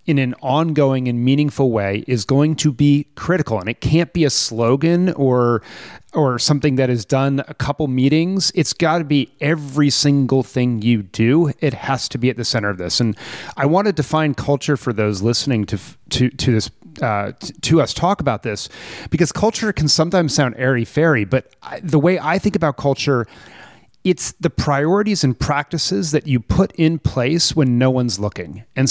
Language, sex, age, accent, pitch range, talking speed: English, male, 30-49, American, 125-155 Hz, 195 wpm